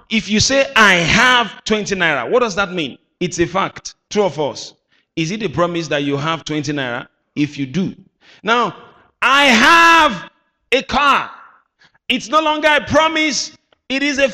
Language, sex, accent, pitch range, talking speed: English, male, Nigerian, 160-235 Hz, 175 wpm